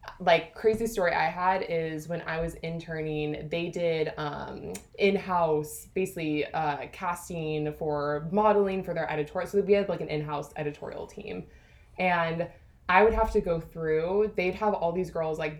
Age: 20-39